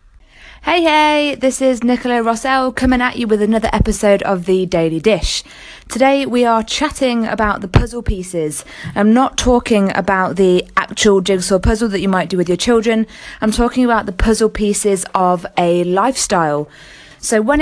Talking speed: 170 wpm